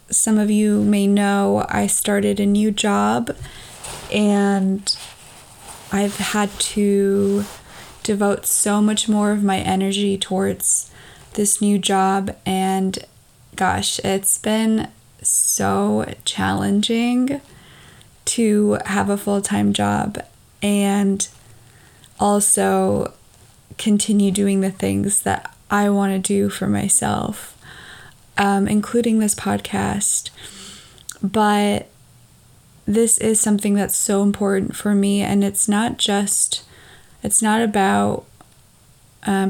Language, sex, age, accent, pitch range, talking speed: English, female, 20-39, American, 150-210 Hz, 105 wpm